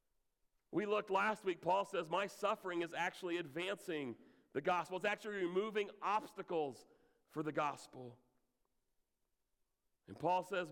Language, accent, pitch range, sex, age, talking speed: English, American, 135-185 Hz, male, 40-59, 130 wpm